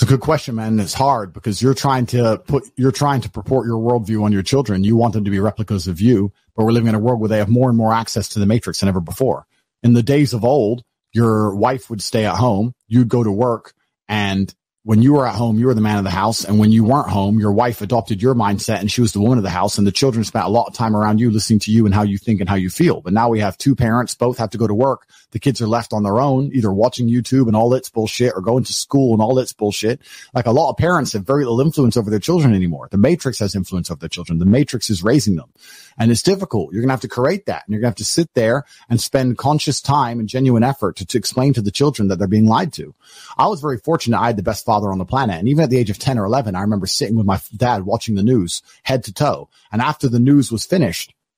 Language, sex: English, male